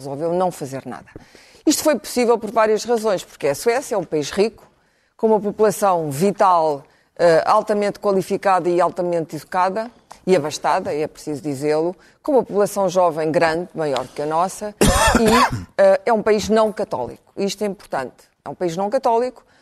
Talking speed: 165 wpm